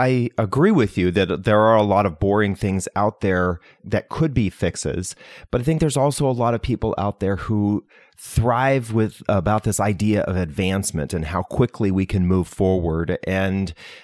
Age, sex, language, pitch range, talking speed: 40-59, male, English, 95-115 Hz, 190 wpm